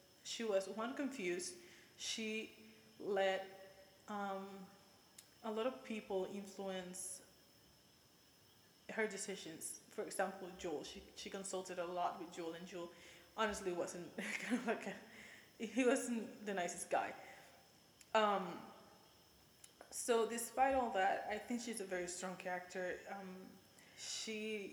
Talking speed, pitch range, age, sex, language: 125 wpm, 180-210 Hz, 20-39, female, English